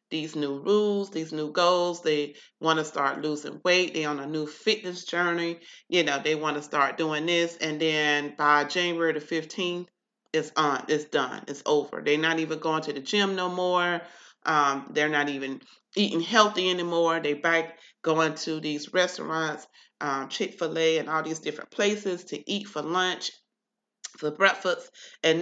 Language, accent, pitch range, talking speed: English, American, 160-195 Hz, 175 wpm